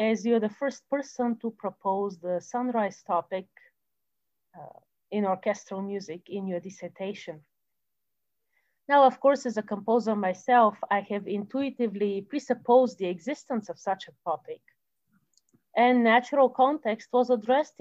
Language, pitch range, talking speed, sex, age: English, 195-250 Hz, 130 wpm, female, 40-59